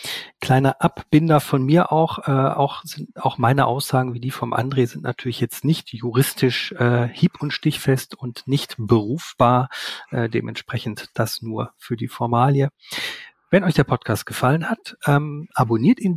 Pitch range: 120-155 Hz